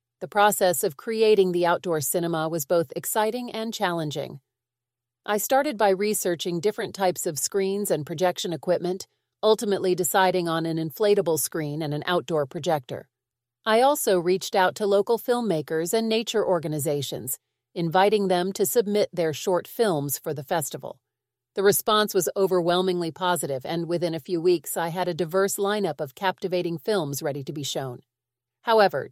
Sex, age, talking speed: female, 40-59, 155 wpm